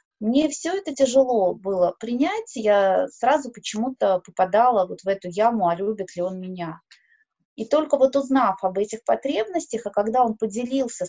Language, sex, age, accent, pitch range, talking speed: Russian, female, 20-39, native, 200-265 Hz, 160 wpm